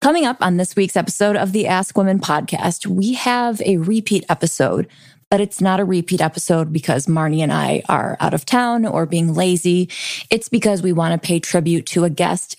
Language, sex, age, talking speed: English, female, 20-39, 205 wpm